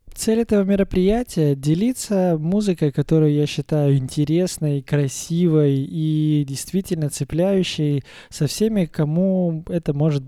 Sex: male